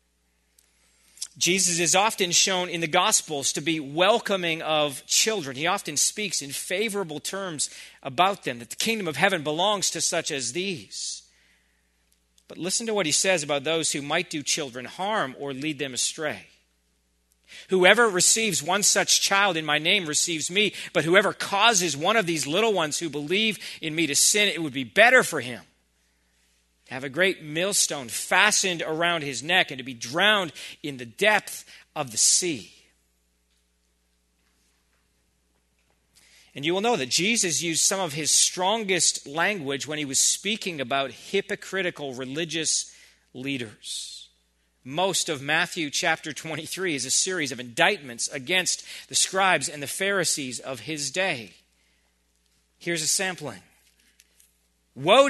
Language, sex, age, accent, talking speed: English, male, 40-59, American, 150 wpm